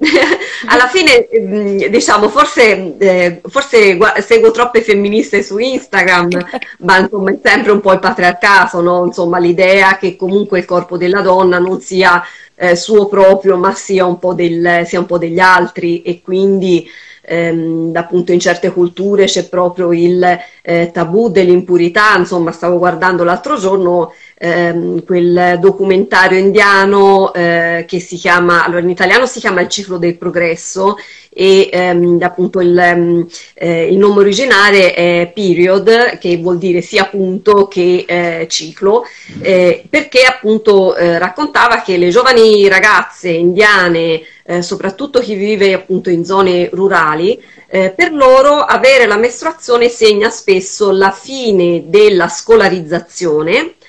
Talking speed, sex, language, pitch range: 140 wpm, female, Italian, 175-210 Hz